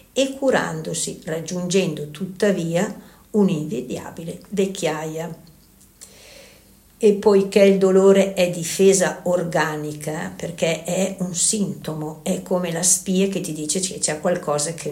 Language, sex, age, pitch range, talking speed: Italian, female, 60-79, 165-195 Hz, 115 wpm